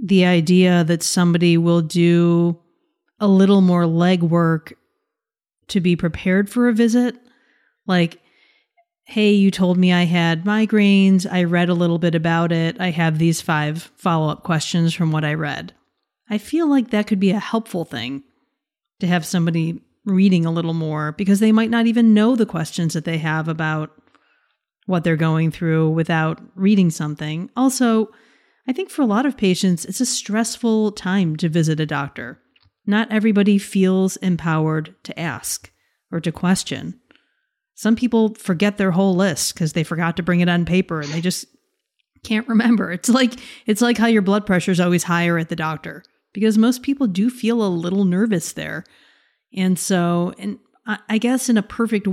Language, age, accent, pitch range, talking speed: English, 30-49, American, 170-220 Hz, 175 wpm